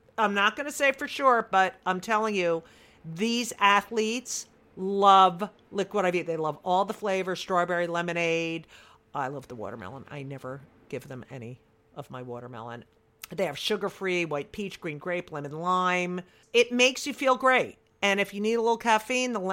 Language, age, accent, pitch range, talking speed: English, 50-69, American, 165-220 Hz, 170 wpm